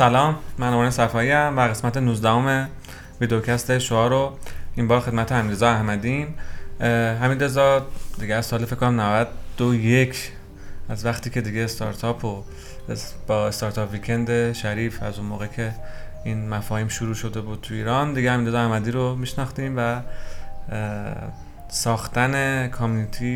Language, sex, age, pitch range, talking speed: Persian, male, 30-49, 110-125 Hz, 140 wpm